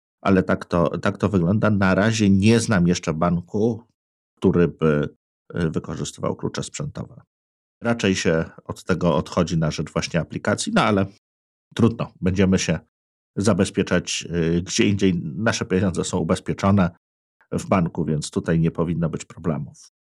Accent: native